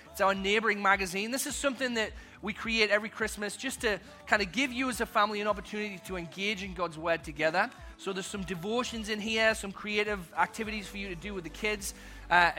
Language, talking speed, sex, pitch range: English, 220 wpm, male, 180-220 Hz